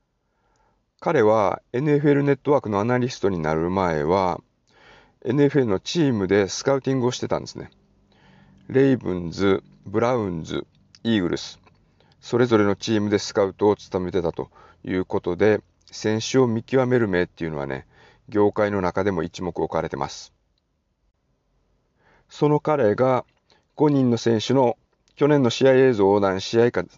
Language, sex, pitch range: Japanese, male, 95-125 Hz